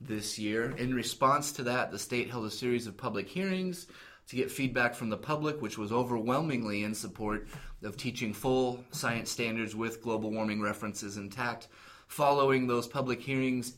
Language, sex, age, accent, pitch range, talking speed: English, male, 30-49, American, 115-135 Hz, 170 wpm